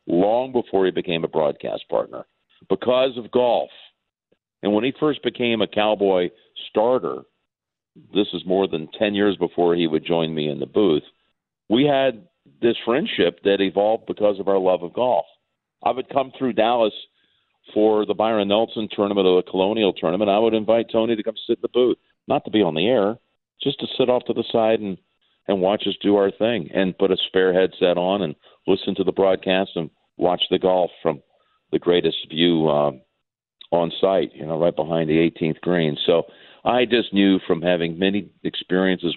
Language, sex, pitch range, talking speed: English, male, 85-115 Hz, 190 wpm